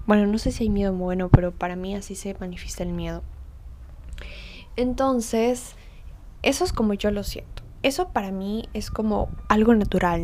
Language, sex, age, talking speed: Spanish, female, 10-29, 170 wpm